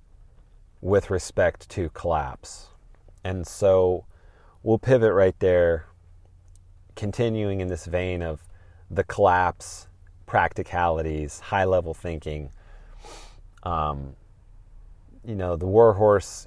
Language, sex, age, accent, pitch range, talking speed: English, male, 30-49, American, 85-100 Hz, 100 wpm